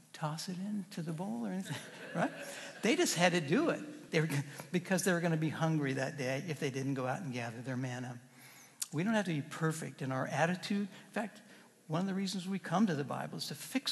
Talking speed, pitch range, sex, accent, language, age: 235 wpm, 140-185 Hz, male, American, English, 60-79